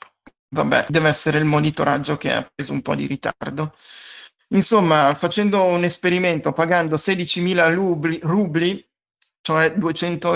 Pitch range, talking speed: 150-180 Hz, 120 wpm